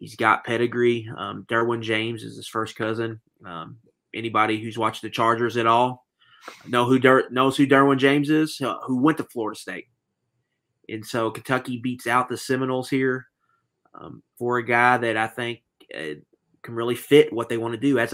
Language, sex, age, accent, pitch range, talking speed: English, male, 30-49, American, 115-130 Hz, 190 wpm